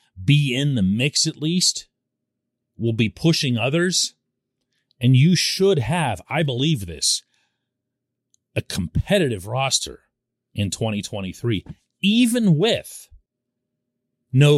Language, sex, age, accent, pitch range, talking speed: English, male, 40-59, American, 115-165 Hz, 105 wpm